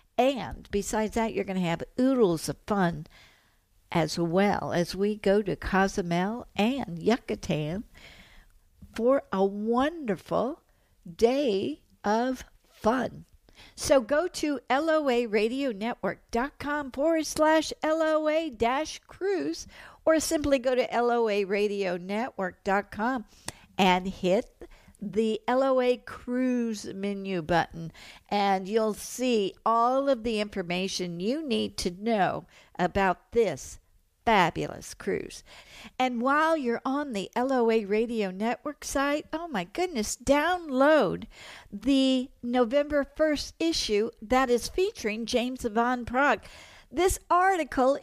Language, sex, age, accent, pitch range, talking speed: English, female, 60-79, American, 200-280 Hz, 105 wpm